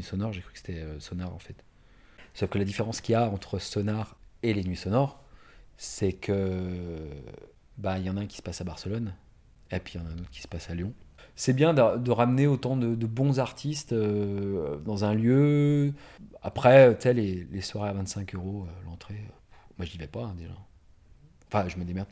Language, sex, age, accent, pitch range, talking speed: French, male, 40-59, French, 90-120 Hz, 215 wpm